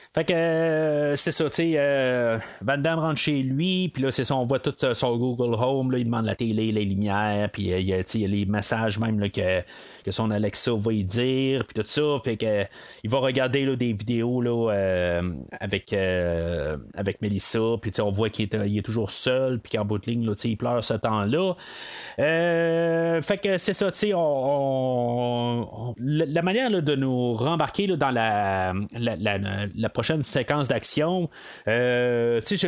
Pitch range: 110-155 Hz